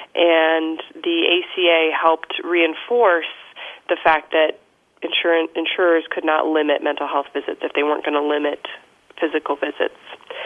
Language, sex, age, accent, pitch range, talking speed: English, female, 30-49, American, 155-215 Hz, 130 wpm